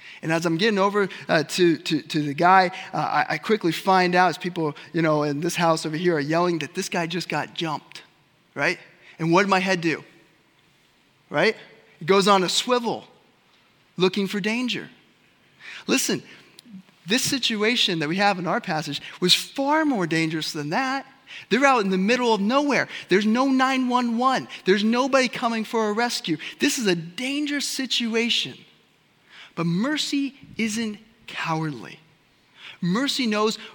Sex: male